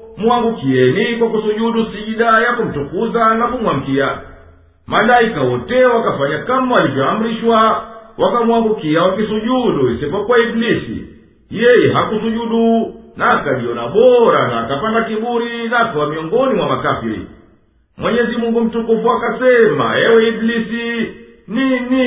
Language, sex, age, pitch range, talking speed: Swahili, male, 50-69, 215-230 Hz, 100 wpm